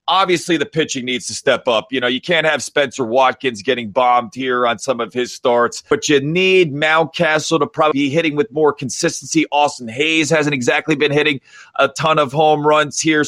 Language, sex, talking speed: English, male, 205 wpm